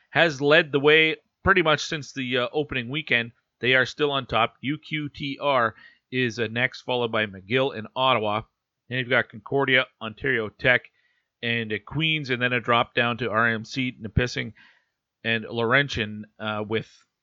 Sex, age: male, 40-59